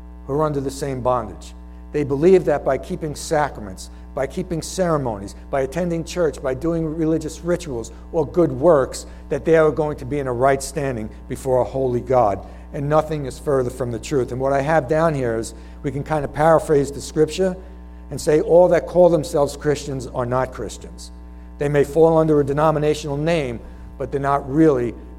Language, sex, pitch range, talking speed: English, male, 105-150 Hz, 195 wpm